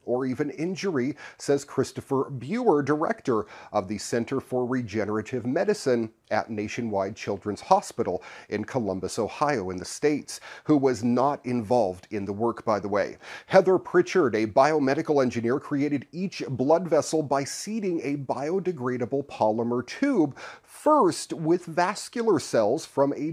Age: 40-59